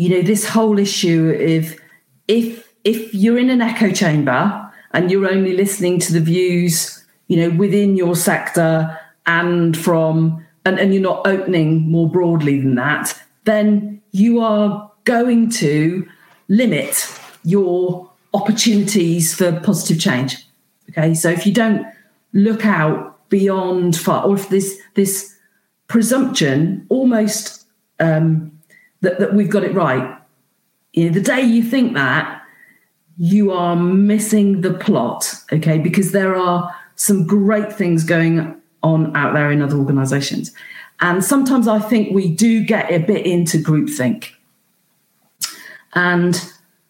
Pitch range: 165-210 Hz